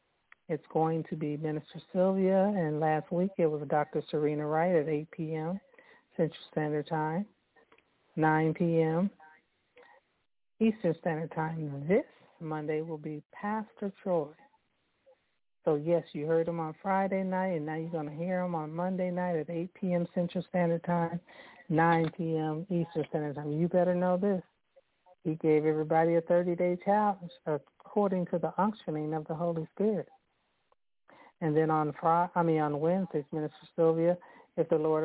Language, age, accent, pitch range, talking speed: English, 60-79, American, 155-180 Hz, 155 wpm